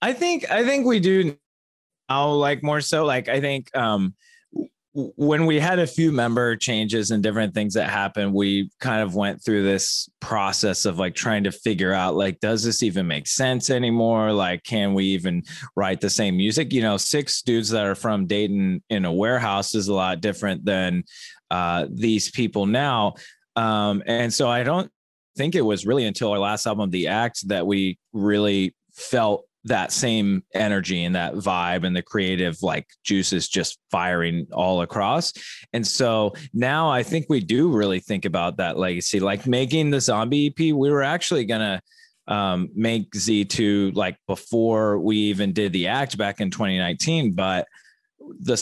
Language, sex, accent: English, male, American